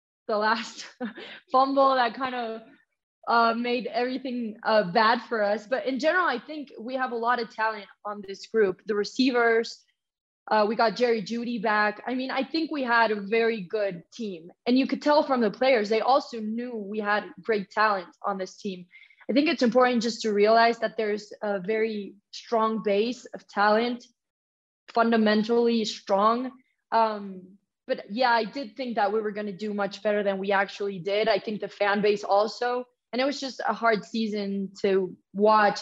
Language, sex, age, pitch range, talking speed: English, female, 20-39, 210-245 Hz, 190 wpm